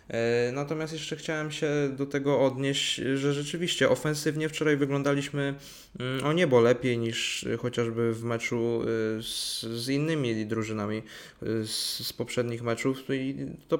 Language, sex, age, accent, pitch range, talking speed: Polish, male, 20-39, native, 110-130 Hz, 125 wpm